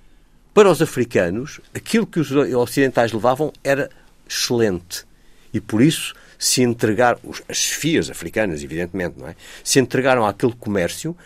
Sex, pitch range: male, 100-135 Hz